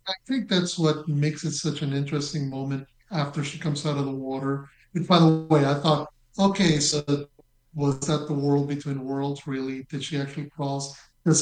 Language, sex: English, male